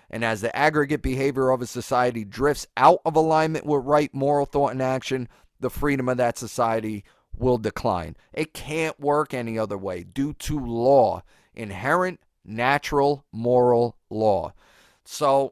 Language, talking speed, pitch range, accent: English, 150 wpm, 120-150 Hz, American